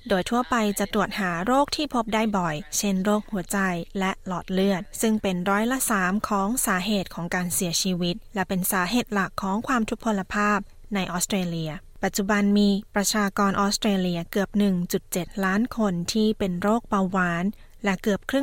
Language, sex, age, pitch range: Thai, female, 20-39, 185-220 Hz